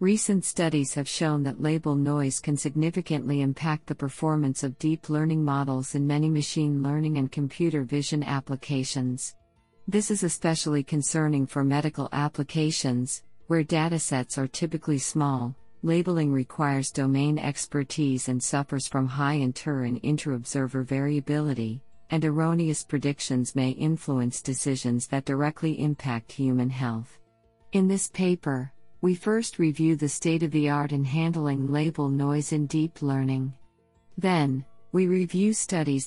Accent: American